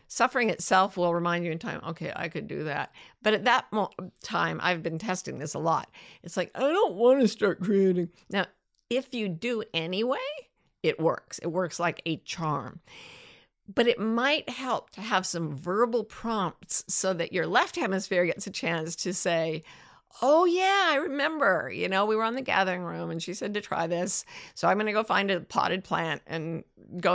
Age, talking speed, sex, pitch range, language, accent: 50-69, 200 wpm, female, 175-225 Hz, English, American